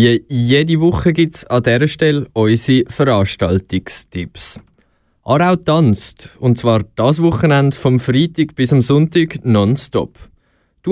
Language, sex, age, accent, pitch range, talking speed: German, male, 20-39, Swiss, 110-150 Hz, 125 wpm